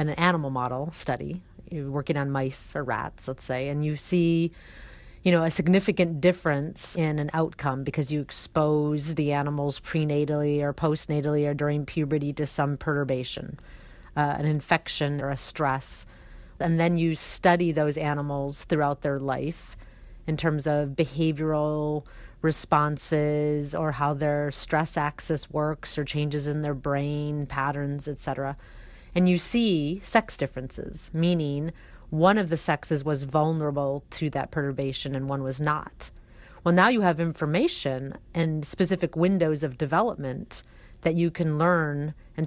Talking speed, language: 150 wpm, English